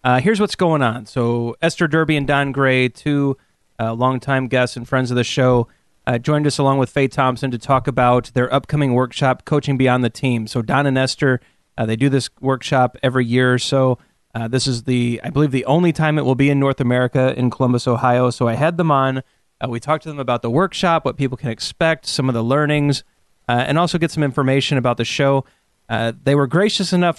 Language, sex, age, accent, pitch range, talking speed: English, male, 30-49, American, 125-150 Hz, 225 wpm